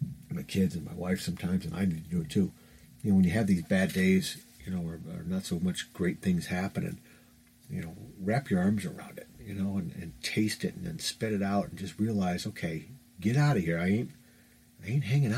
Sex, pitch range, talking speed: male, 95-145 Hz, 245 wpm